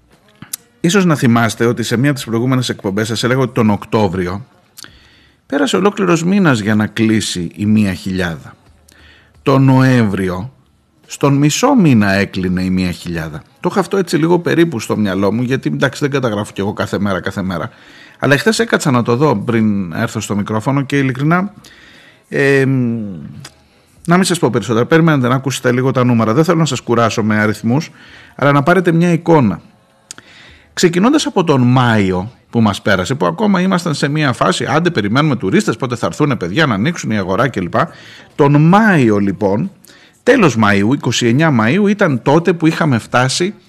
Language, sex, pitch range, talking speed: Greek, male, 110-170 Hz, 170 wpm